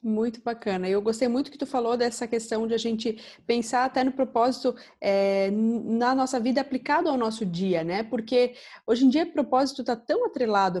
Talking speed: 190 wpm